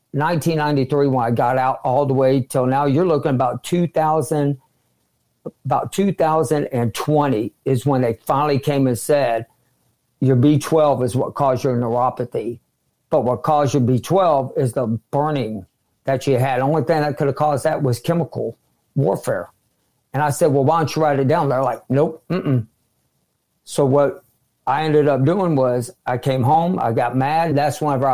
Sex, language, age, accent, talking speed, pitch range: male, English, 60-79, American, 175 wpm, 130-155 Hz